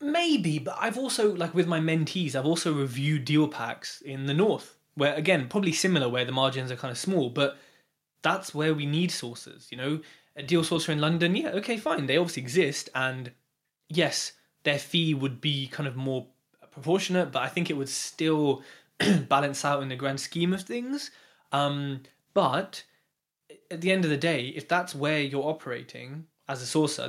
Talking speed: 190 wpm